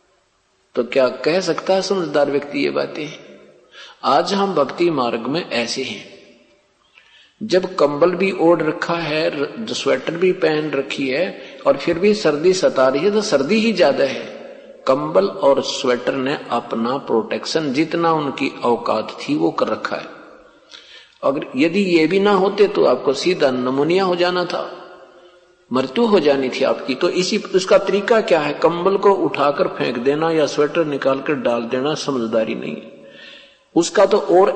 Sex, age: male, 50-69